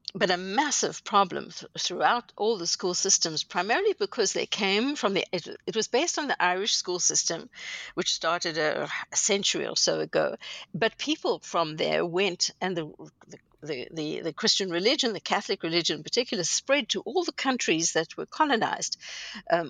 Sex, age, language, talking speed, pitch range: female, 60-79, English, 180 wpm, 170-235 Hz